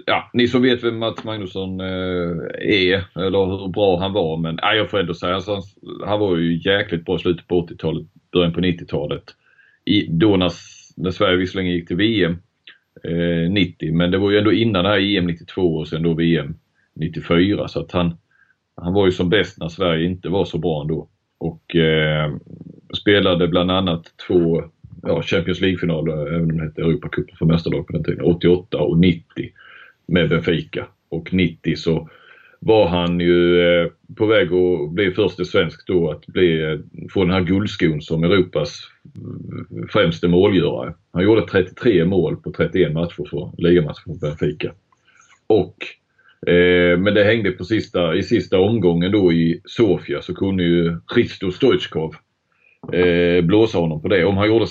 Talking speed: 175 wpm